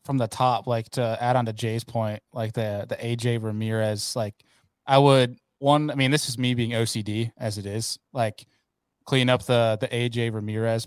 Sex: male